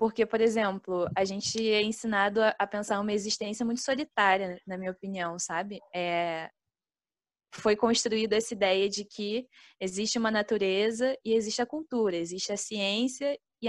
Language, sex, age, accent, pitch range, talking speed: Portuguese, female, 10-29, Brazilian, 195-225 Hz, 155 wpm